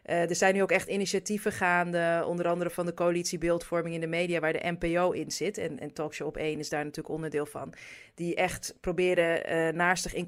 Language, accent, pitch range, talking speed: Dutch, Dutch, 160-180 Hz, 220 wpm